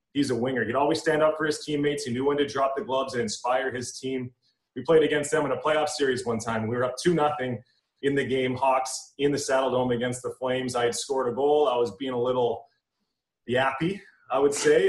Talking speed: 240 wpm